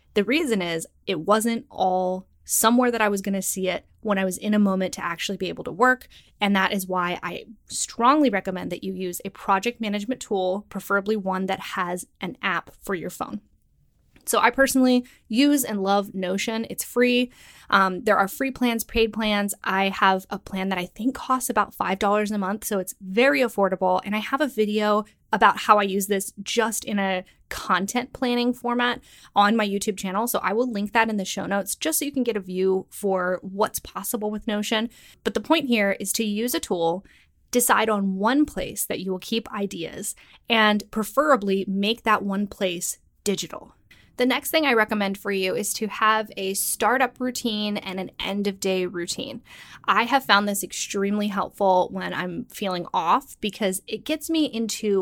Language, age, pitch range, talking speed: English, 10-29, 190-230 Hz, 195 wpm